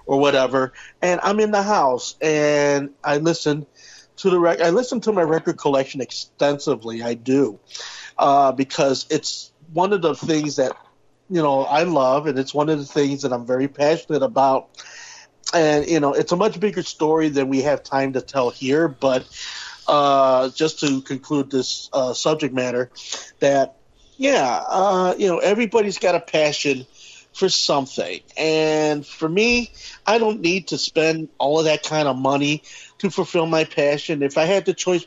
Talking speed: 175 wpm